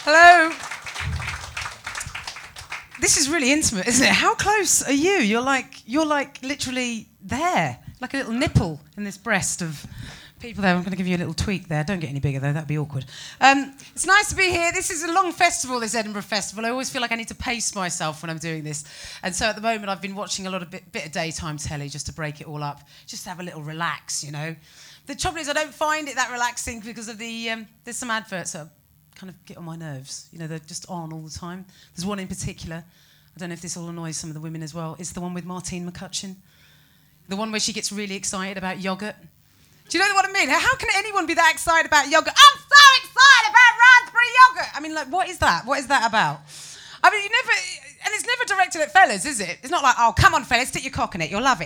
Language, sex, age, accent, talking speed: English, female, 30-49, British, 255 wpm